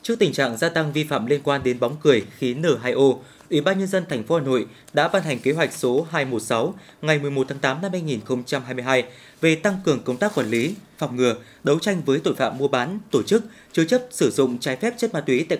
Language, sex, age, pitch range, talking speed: Vietnamese, male, 20-39, 130-180 Hz, 240 wpm